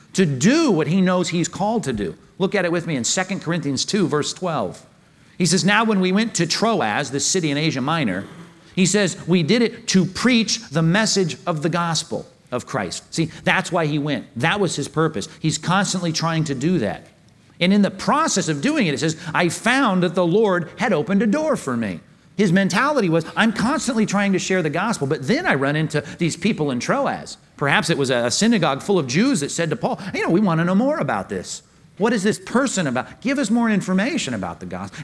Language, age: English, 50-69